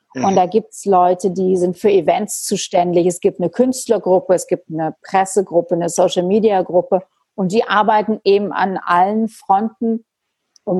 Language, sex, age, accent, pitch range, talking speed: German, female, 40-59, German, 190-235 Hz, 155 wpm